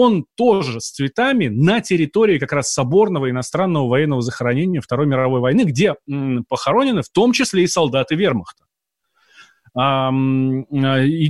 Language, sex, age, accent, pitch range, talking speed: Russian, male, 30-49, native, 135-185 Hz, 125 wpm